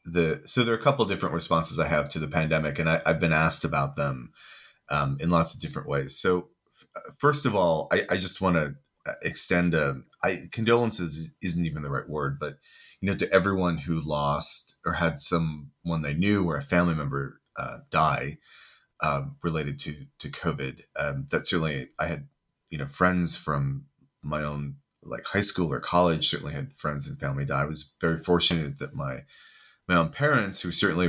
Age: 30-49